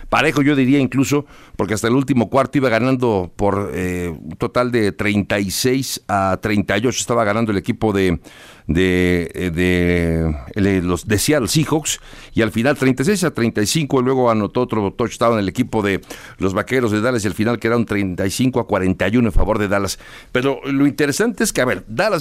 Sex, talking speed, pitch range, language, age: male, 185 wpm, 100-130 Hz, Spanish, 60-79